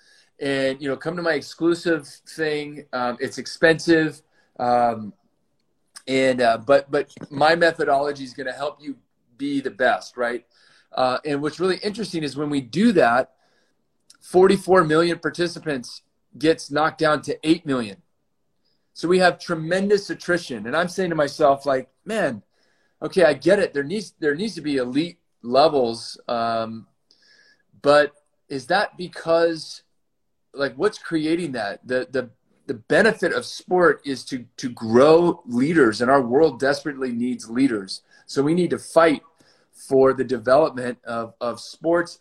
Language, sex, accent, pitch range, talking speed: English, male, American, 125-165 Hz, 150 wpm